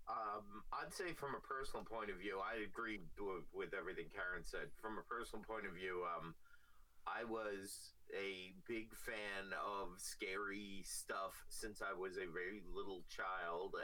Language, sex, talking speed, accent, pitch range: English, male, 165 wpm, American, 100-145 Hz